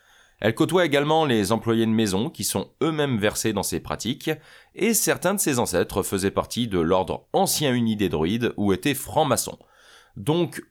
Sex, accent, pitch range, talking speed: male, French, 95-130 Hz, 175 wpm